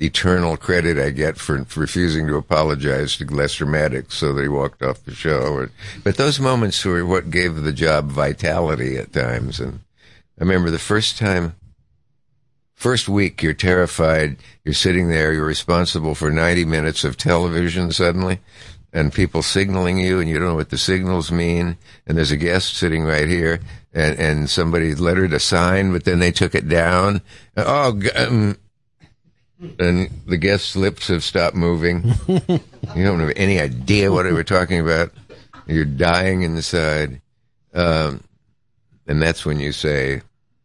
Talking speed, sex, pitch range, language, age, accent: 160 wpm, male, 80-100 Hz, English, 60-79, American